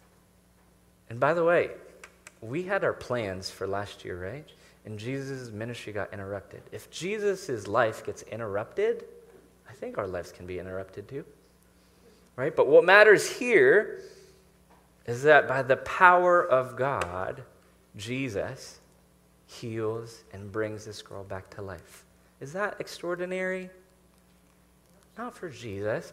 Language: English